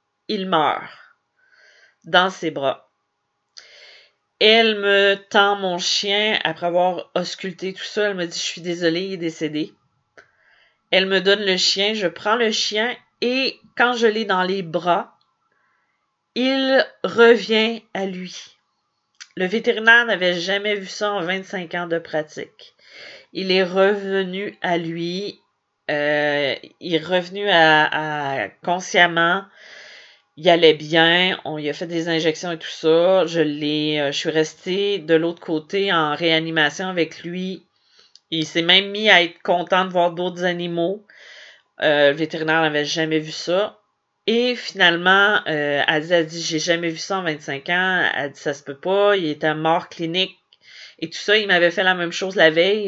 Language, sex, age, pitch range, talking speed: French, female, 40-59, 160-200 Hz, 160 wpm